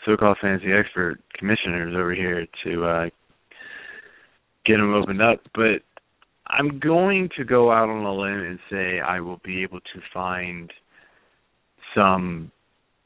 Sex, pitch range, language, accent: male, 90-110 Hz, English, American